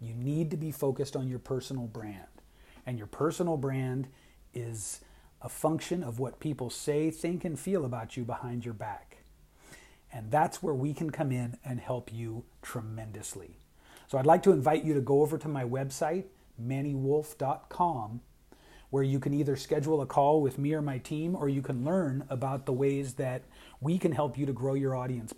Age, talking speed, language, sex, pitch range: 40-59, 190 wpm, English, male, 125-150 Hz